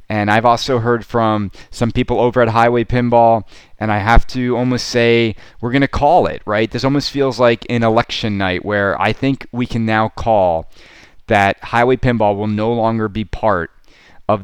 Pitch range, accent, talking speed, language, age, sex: 105-125 Hz, American, 190 wpm, English, 30-49, male